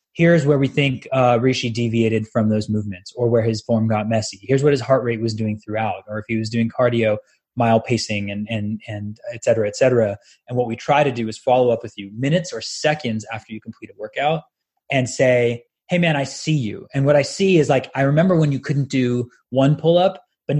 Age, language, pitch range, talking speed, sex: 20-39, English, 110-140 Hz, 235 wpm, male